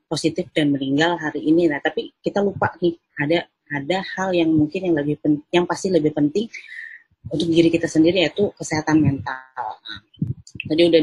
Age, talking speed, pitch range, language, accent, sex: 30-49, 170 wpm, 140-170 Hz, Indonesian, native, female